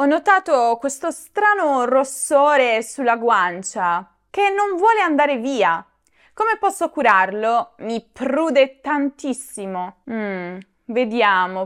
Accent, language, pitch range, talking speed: native, Italian, 205-285 Hz, 105 wpm